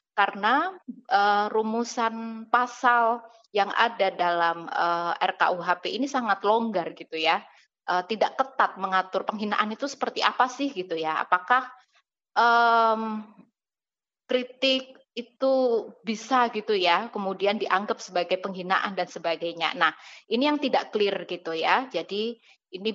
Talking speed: 125 wpm